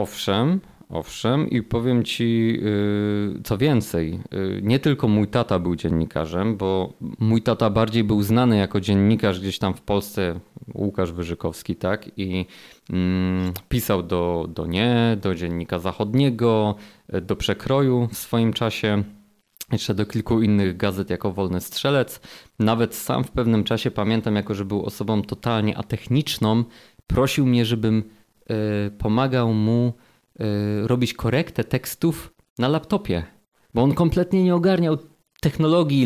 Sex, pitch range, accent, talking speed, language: male, 105-135 Hz, native, 135 wpm, Polish